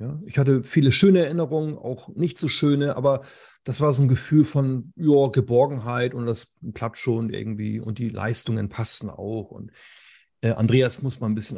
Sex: male